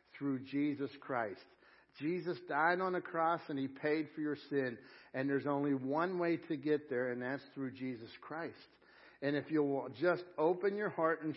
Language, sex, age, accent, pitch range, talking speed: English, male, 60-79, American, 145-190 Hz, 185 wpm